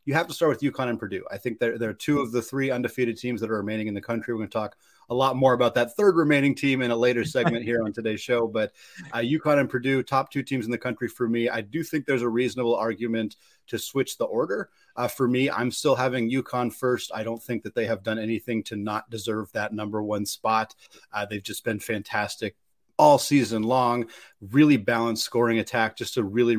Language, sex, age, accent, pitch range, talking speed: English, male, 30-49, American, 110-125 Hz, 240 wpm